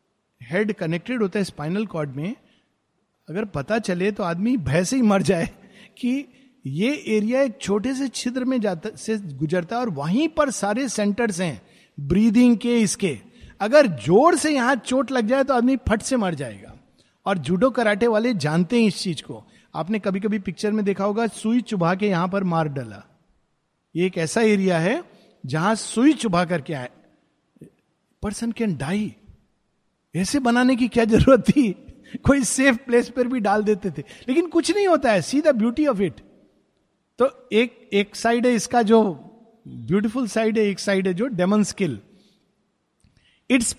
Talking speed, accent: 175 wpm, native